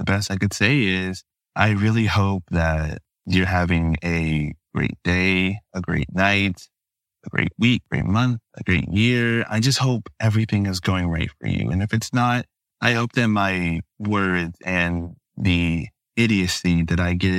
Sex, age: male, 20-39